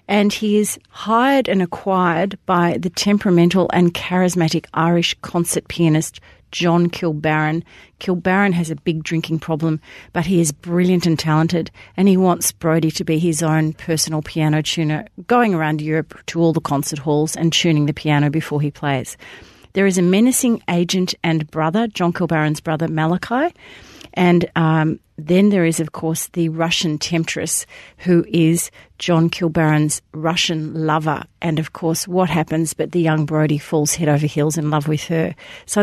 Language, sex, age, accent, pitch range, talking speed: English, female, 40-59, Australian, 160-190 Hz, 165 wpm